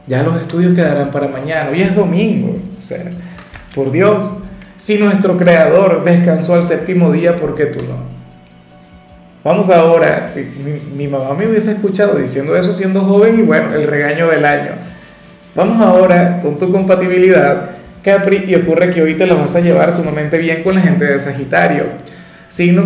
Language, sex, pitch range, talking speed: Spanish, male, 150-185 Hz, 170 wpm